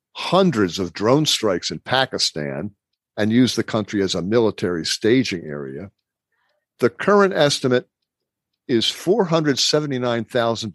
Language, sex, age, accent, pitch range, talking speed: English, male, 50-69, American, 105-135 Hz, 110 wpm